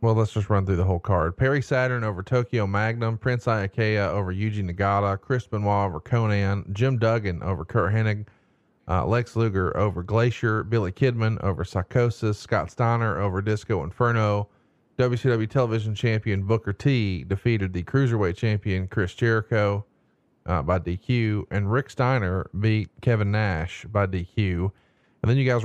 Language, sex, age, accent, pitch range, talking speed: English, male, 30-49, American, 100-120 Hz, 155 wpm